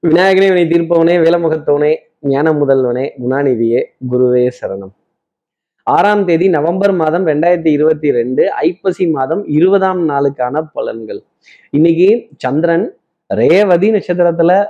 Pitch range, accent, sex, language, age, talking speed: 125-170 Hz, native, male, Tamil, 20-39, 100 wpm